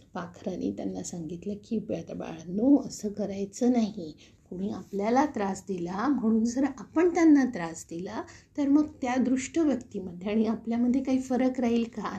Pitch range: 180-250 Hz